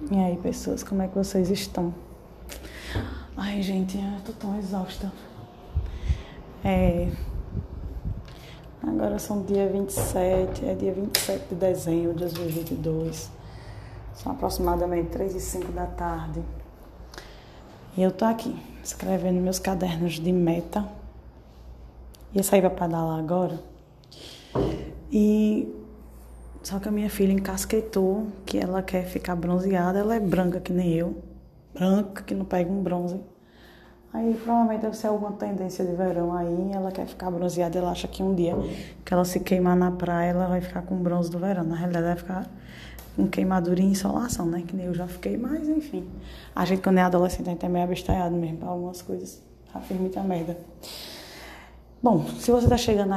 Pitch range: 175-190 Hz